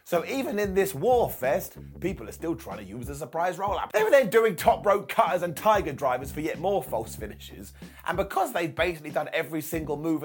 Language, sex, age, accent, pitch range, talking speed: English, male, 30-49, British, 135-195 Hz, 230 wpm